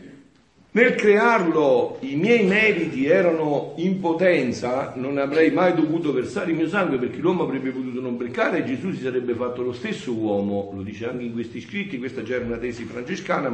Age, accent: 50-69, native